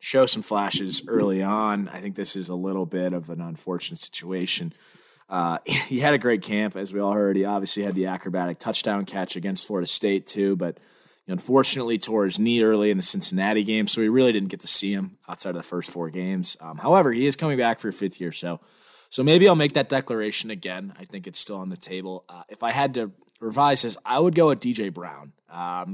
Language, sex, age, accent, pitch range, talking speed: English, male, 20-39, American, 95-120 Hz, 235 wpm